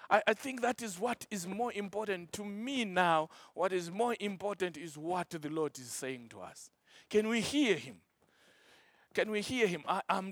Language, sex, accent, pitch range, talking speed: English, male, South African, 145-195 Hz, 185 wpm